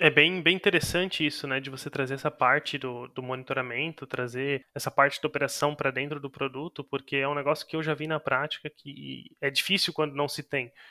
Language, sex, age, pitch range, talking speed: Portuguese, male, 20-39, 140-165 Hz, 220 wpm